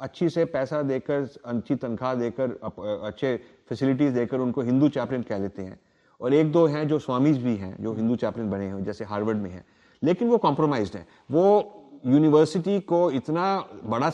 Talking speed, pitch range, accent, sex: 180 wpm, 120-160 Hz, Indian, male